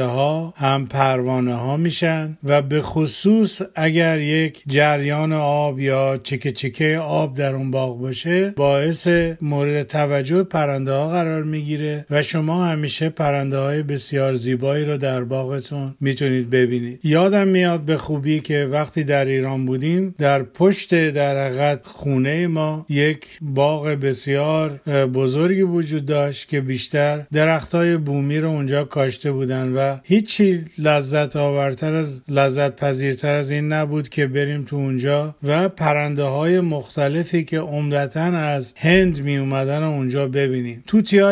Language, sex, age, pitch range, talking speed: Persian, male, 50-69, 140-160 Hz, 140 wpm